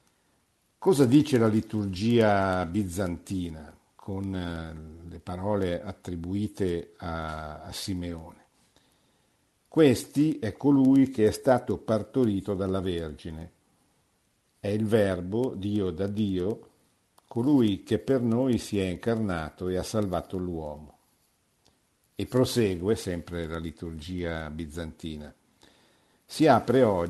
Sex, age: male, 50-69